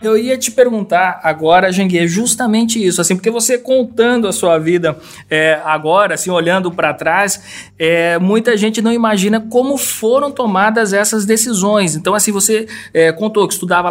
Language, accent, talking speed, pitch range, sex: Portuguese, Brazilian, 165 wpm, 175-220 Hz, male